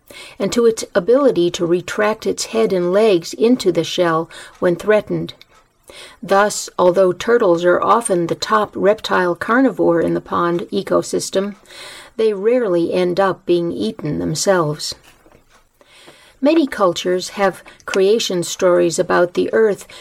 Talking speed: 130 wpm